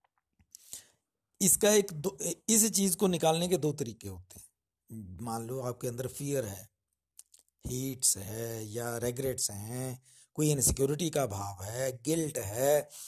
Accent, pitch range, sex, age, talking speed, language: native, 125-165 Hz, male, 60-79, 135 wpm, Hindi